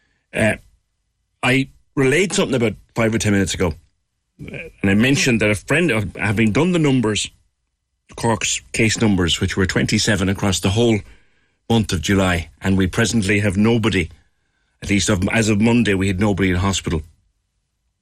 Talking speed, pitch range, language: 155 wpm, 90-110 Hz, English